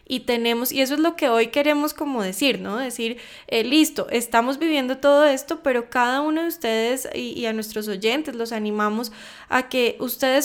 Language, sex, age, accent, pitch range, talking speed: English, female, 10-29, Colombian, 235-275 Hz, 195 wpm